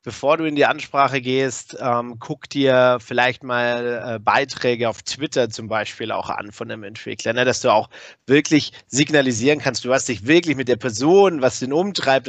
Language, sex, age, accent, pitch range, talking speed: German, male, 30-49, German, 125-160 Hz, 190 wpm